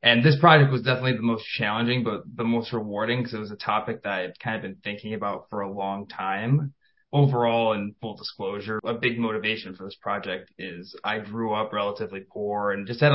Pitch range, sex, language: 105-125 Hz, male, English